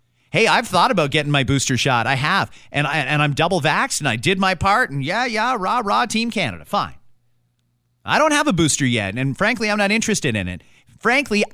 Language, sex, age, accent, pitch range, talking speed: English, male, 30-49, American, 140-210 Hz, 220 wpm